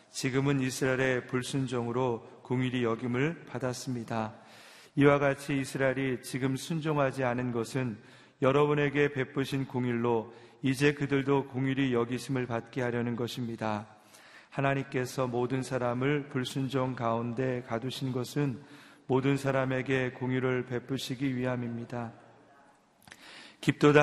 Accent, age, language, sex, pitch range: native, 40-59, Korean, male, 120-135 Hz